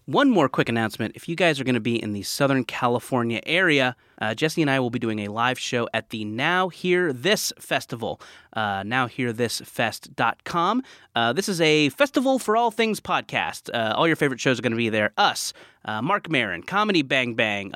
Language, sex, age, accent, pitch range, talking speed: English, male, 30-49, American, 115-165 Hz, 205 wpm